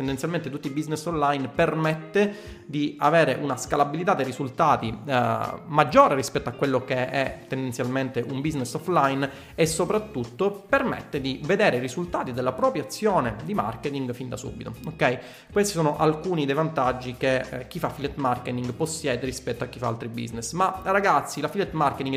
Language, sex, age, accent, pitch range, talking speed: Italian, male, 30-49, native, 130-175 Hz, 165 wpm